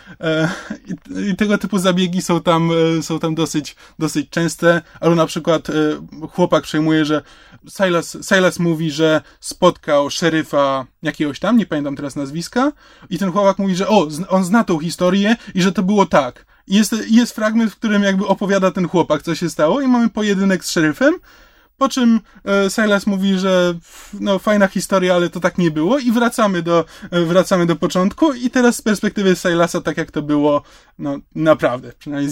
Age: 20-39